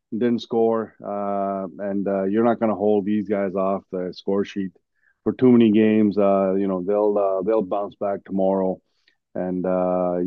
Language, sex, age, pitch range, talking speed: English, male, 30-49, 95-110 Hz, 180 wpm